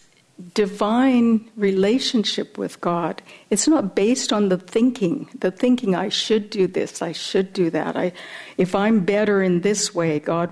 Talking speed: 155 wpm